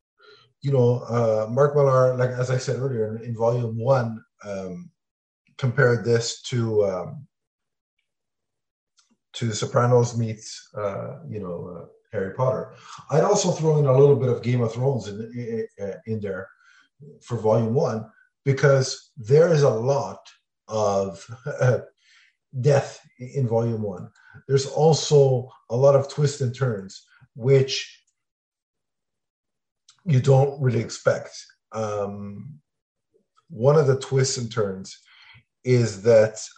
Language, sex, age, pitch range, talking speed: English, male, 50-69, 115-140 Hz, 125 wpm